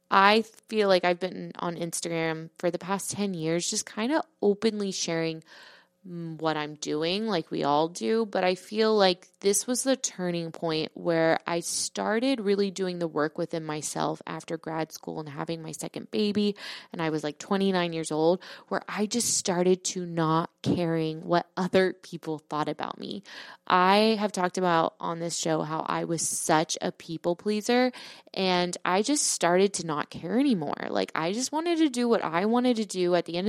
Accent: American